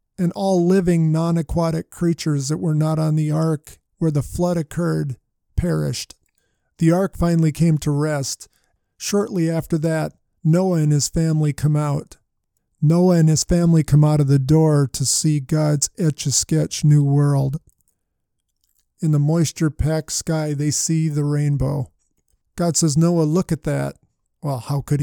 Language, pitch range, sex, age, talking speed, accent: English, 145-165 Hz, male, 50-69, 150 wpm, American